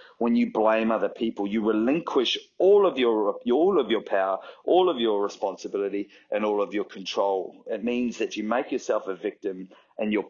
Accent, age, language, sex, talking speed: Australian, 30-49, English, male, 200 wpm